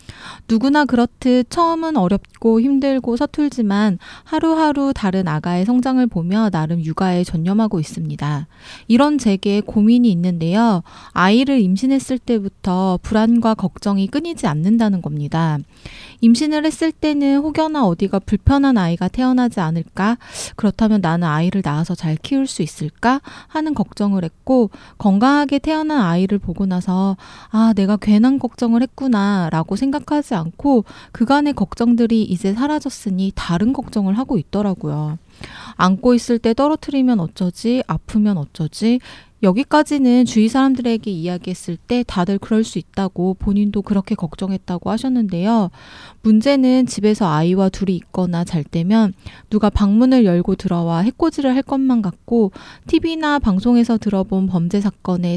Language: Korean